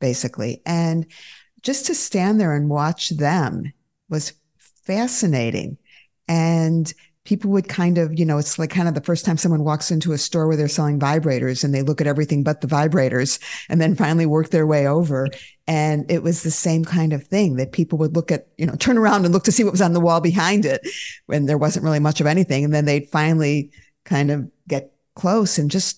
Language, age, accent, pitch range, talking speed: English, 50-69, American, 150-180 Hz, 215 wpm